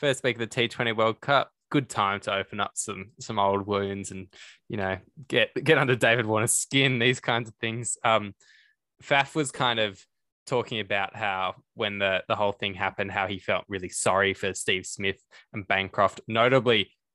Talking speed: 190 wpm